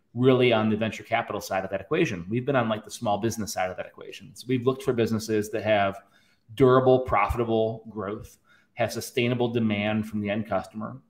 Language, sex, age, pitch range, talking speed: English, male, 30-49, 105-125 Hz, 195 wpm